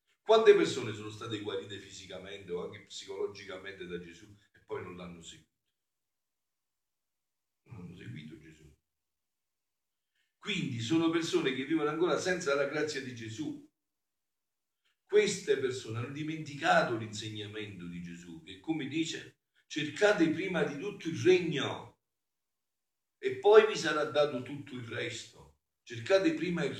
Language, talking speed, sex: Italian, 130 wpm, male